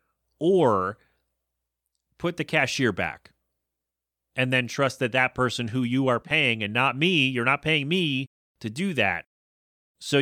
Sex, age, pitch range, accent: male, 30-49, 105-140 Hz, American